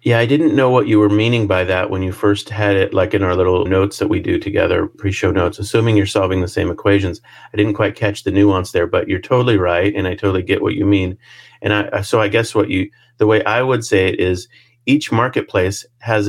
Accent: American